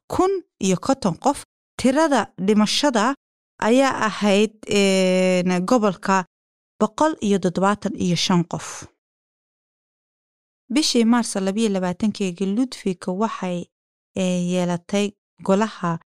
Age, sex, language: 30-49, female, Kannada